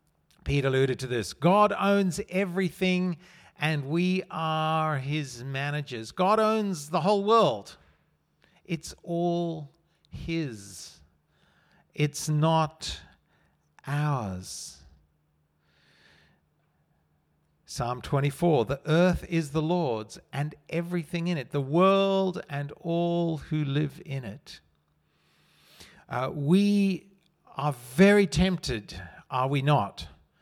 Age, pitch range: 50-69, 130-175 Hz